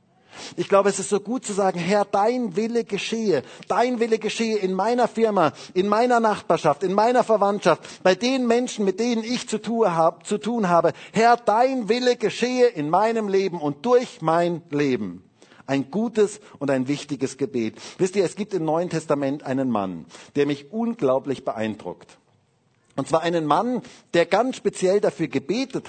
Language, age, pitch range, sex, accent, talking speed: German, 50-69, 140-215 Hz, male, German, 165 wpm